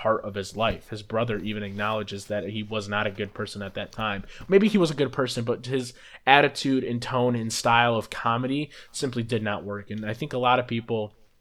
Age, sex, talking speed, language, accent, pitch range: 20-39, male, 230 wpm, English, American, 105-125 Hz